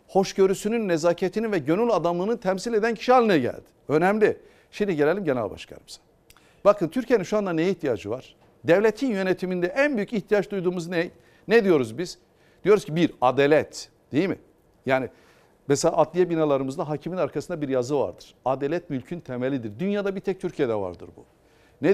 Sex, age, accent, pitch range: male, 60-79, native, 150-205 Hz